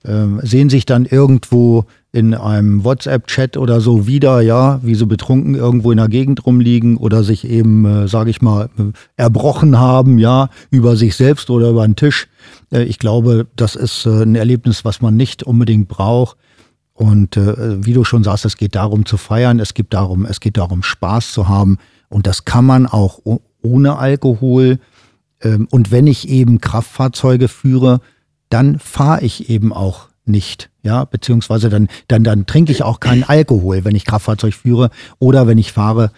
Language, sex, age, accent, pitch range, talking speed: German, male, 50-69, German, 110-130 Hz, 180 wpm